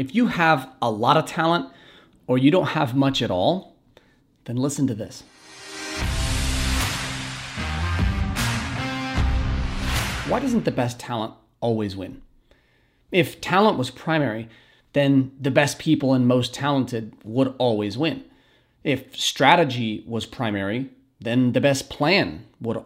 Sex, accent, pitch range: male, American, 115-145 Hz